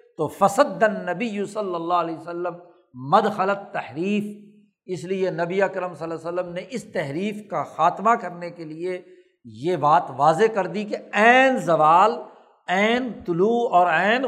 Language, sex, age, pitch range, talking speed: Urdu, male, 60-79, 160-225 Hz, 155 wpm